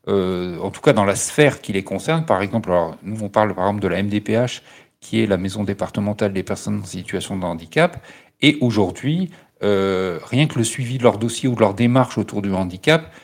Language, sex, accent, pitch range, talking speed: French, male, French, 95-130 Hz, 220 wpm